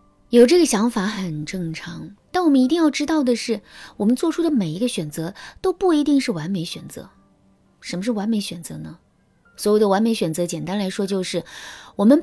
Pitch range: 170-235 Hz